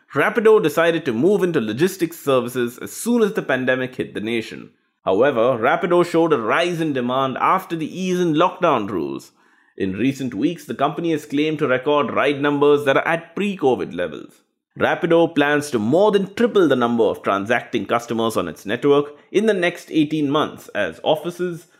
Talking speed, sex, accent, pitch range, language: 180 wpm, male, Indian, 140-180 Hz, English